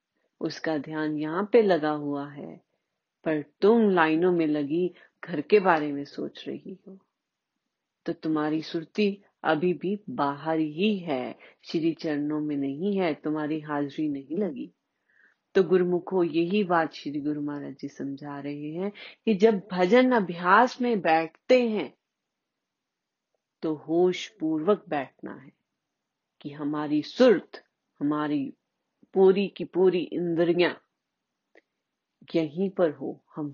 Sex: female